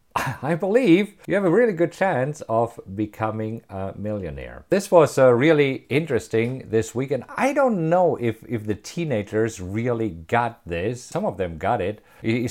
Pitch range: 100-130 Hz